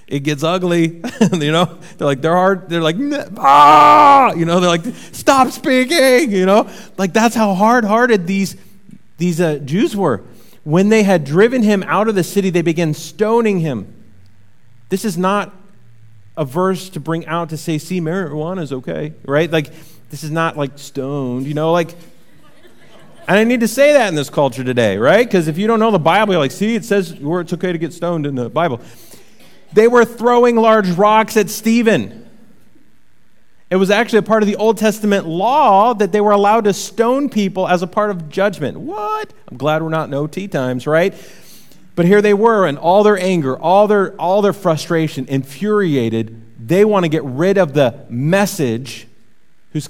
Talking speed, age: 190 wpm, 30-49